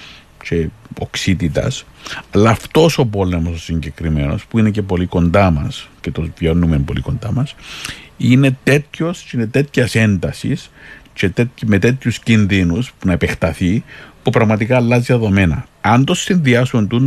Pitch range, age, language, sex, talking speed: 90-115 Hz, 50-69, Greek, male, 135 wpm